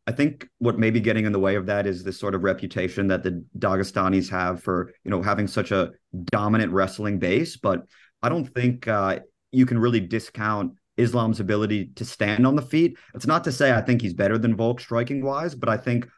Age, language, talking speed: 30-49, English, 225 wpm